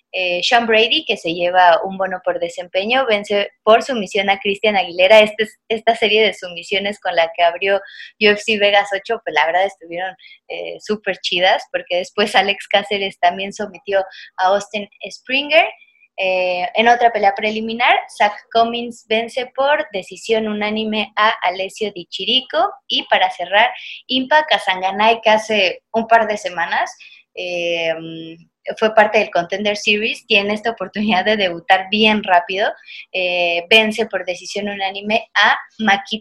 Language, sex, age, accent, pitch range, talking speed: Spanish, female, 20-39, Mexican, 185-225 Hz, 150 wpm